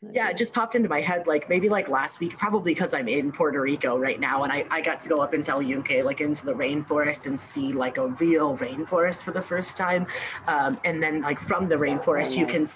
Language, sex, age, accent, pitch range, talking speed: English, female, 30-49, American, 150-245 Hz, 255 wpm